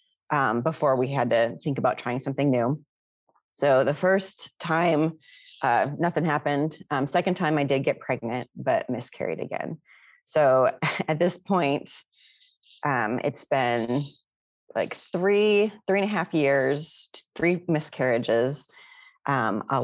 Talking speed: 135 wpm